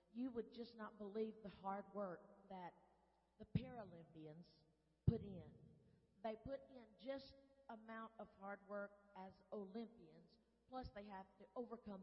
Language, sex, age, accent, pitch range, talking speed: English, female, 40-59, American, 175-215 Hz, 140 wpm